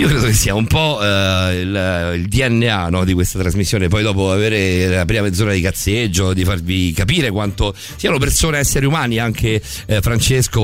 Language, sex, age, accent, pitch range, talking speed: Italian, male, 50-69, native, 90-115 Hz, 180 wpm